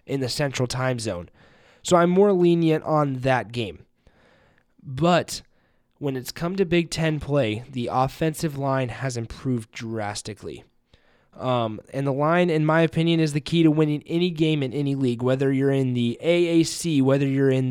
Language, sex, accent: English, male, American